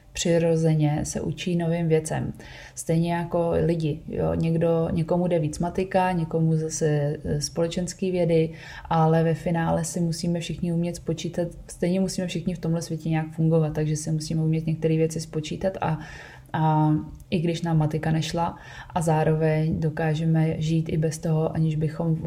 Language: Czech